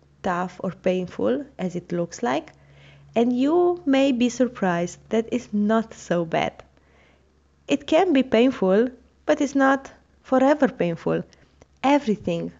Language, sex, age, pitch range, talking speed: English, female, 20-39, 180-230 Hz, 130 wpm